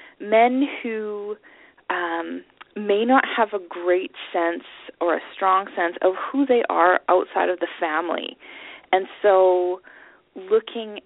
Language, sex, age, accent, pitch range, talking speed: English, female, 20-39, American, 170-230 Hz, 130 wpm